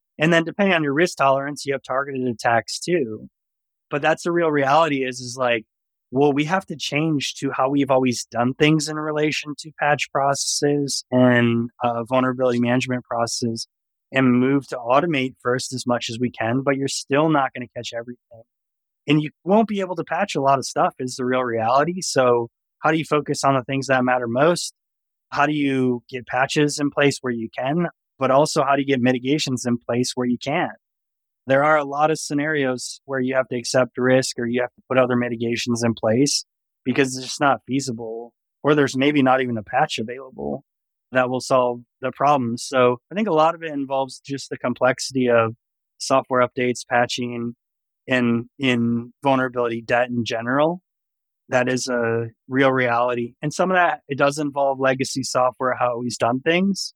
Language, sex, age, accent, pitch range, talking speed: English, male, 20-39, American, 120-145 Hz, 195 wpm